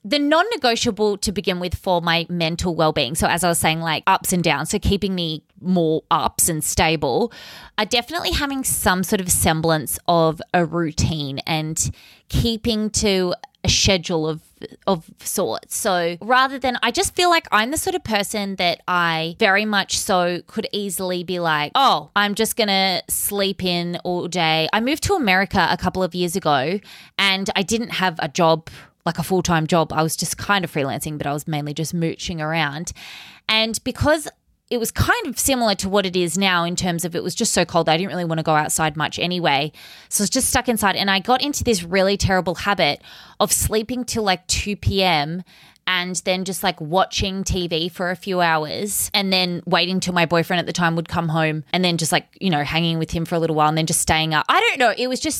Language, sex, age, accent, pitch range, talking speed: English, female, 20-39, Australian, 165-205 Hz, 215 wpm